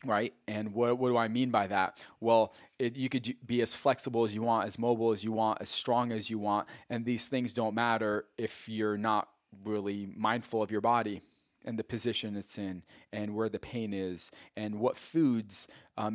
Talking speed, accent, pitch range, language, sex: 210 wpm, American, 105-125 Hz, English, male